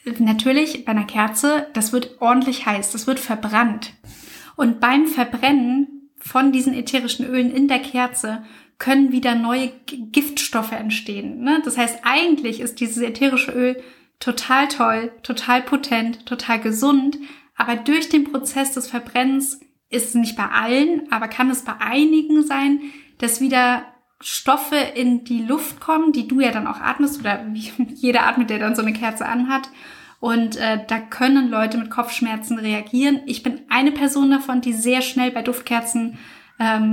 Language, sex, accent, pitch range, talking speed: German, female, German, 230-270 Hz, 160 wpm